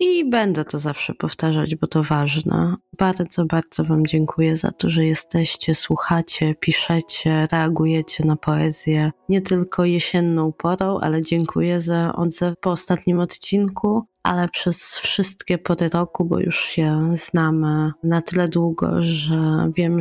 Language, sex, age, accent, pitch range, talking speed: Polish, female, 20-39, native, 165-200 Hz, 140 wpm